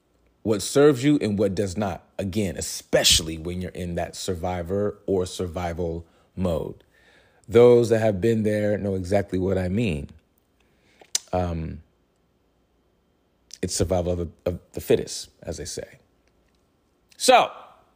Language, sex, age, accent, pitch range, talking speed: English, male, 40-59, American, 85-115 Hz, 130 wpm